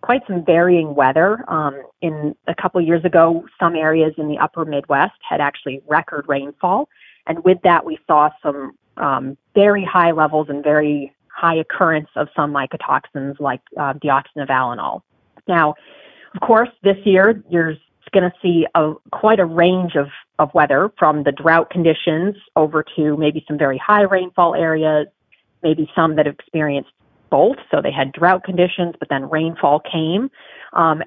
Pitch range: 150-180 Hz